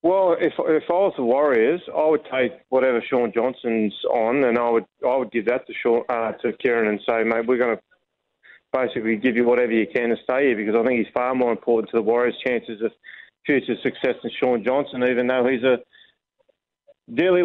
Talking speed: 215 wpm